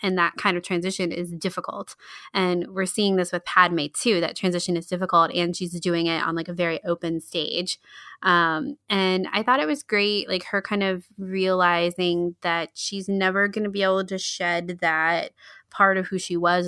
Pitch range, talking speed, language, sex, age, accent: 170-195 Hz, 200 wpm, English, female, 20-39, American